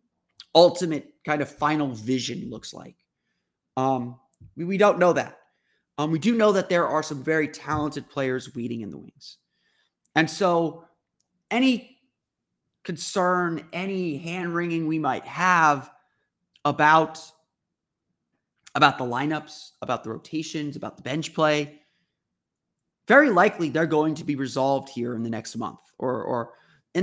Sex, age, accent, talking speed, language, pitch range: male, 30-49, American, 140 wpm, English, 140-180 Hz